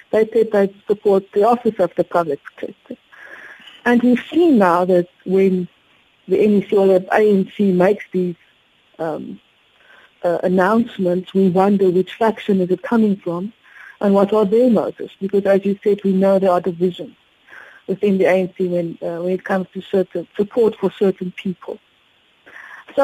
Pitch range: 185-230 Hz